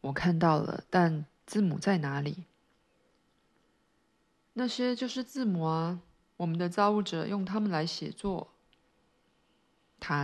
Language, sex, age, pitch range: Chinese, female, 20-39, 155-180 Hz